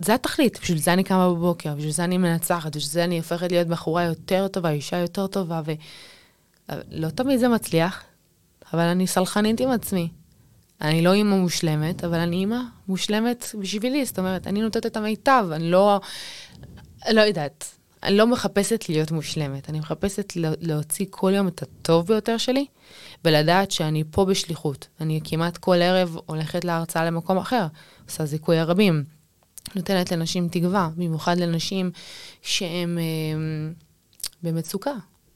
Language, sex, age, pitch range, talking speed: Hebrew, female, 20-39, 155-190 Hz, 100 wpm